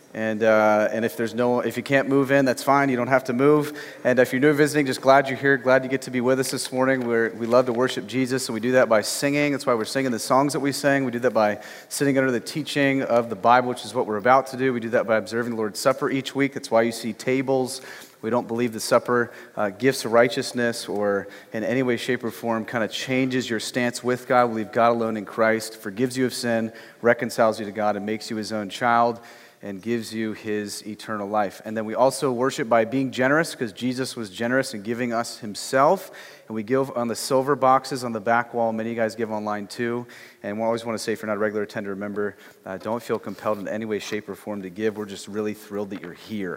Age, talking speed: 30-49, 265 wpm